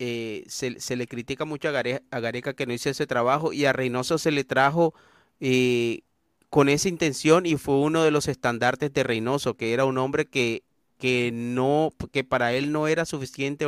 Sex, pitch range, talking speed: male, 125-155 Hz, 190 wpm